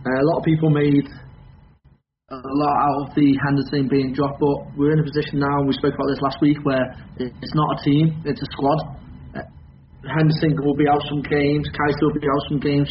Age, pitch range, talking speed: 20-39, 135-150 Hz, 225 wpm